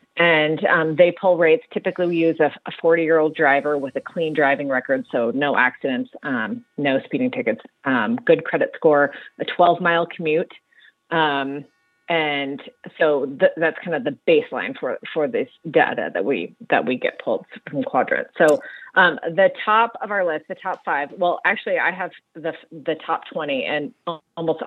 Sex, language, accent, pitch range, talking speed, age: female, English, American, 145-190 Hz, 175 wpm, 30-49